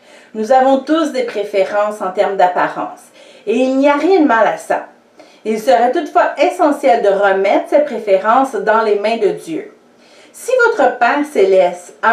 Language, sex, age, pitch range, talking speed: English, female, 40-59, 215-320 Hz, 175 wpm